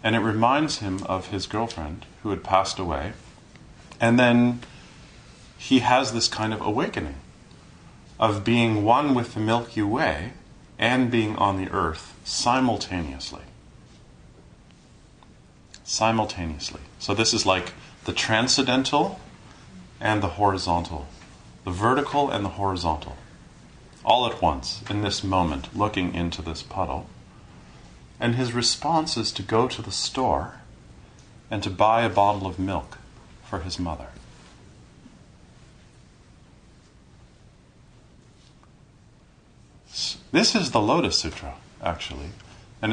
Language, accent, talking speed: English, American, 115 wpm